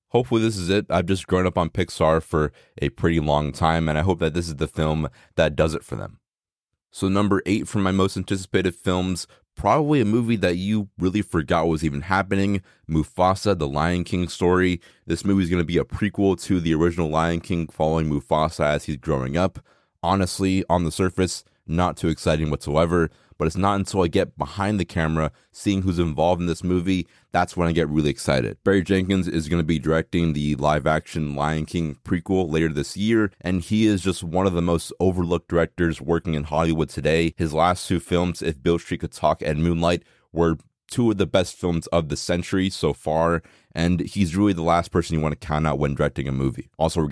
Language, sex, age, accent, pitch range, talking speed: English, male, 20-39, American, 80-95 Hz, 215 wpm